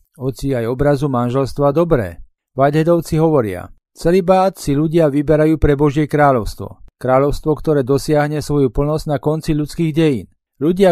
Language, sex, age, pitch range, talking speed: Slovak, male, 40-59, 130-160 Hz, 130 wpm